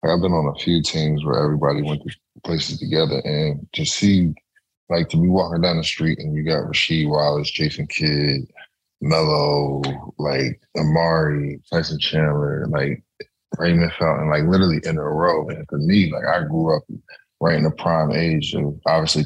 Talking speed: 175 wpm